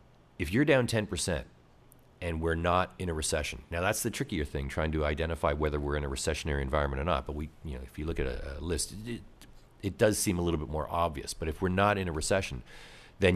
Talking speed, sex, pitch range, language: 245 wpm, male, 75-90 Hz, English